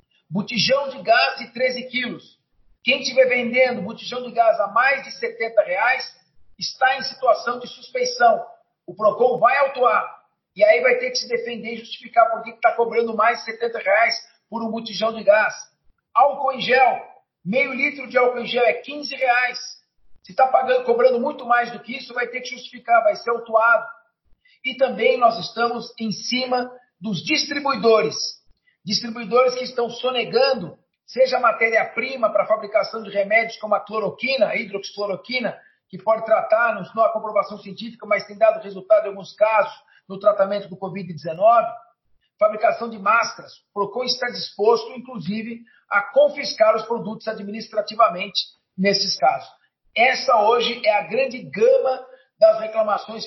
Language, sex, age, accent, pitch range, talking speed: Portuguese, male, 50-69, Brazilian, 220-270 Hz, 160 wpm